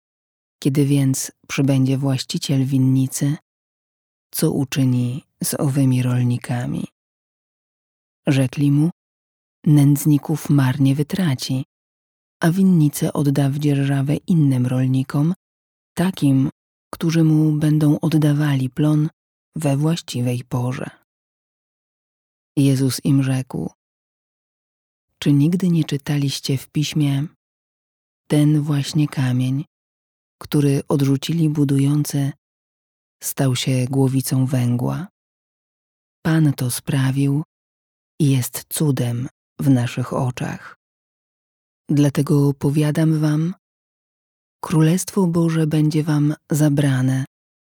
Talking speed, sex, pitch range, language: 85 wpm, female, 130-150 Hz, Polish